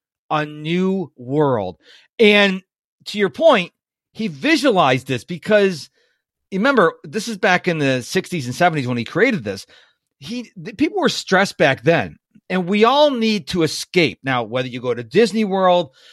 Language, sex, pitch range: English, male, 145-200 Hz